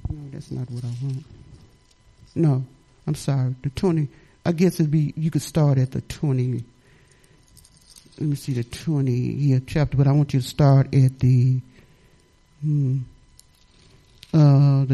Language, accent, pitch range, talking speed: English, American, 130-170 Hz, 145 wpm